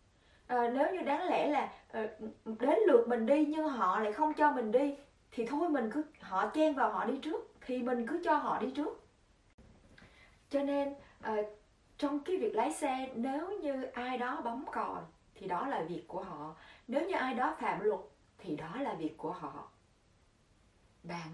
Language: Vietnamese